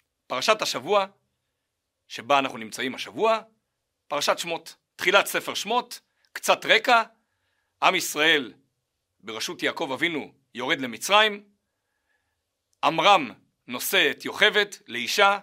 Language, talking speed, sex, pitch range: Hebrew, 95 wpm, male, 185-235 Hz